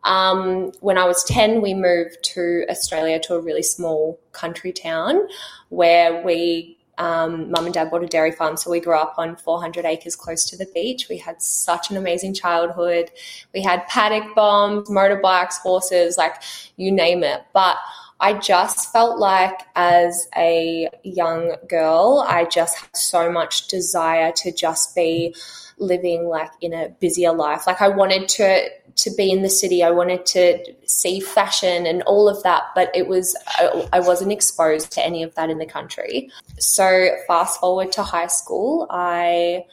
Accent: Australian